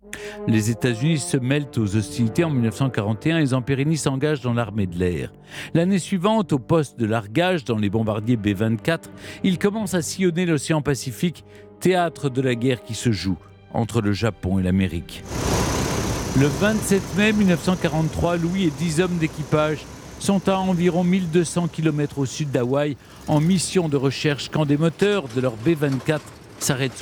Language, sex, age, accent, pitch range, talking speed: French, male, 50-69, French, 115-170 Hz, 160 wpm